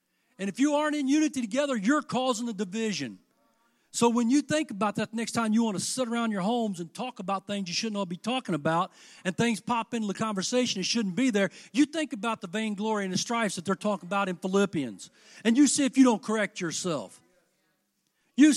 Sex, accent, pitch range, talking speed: male, American, 205-275 Hz, 225 wpm